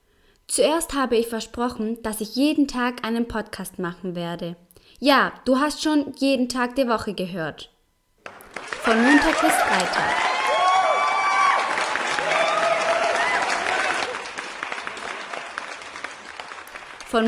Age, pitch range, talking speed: 20-39, 225-285 Hz, 90 wpm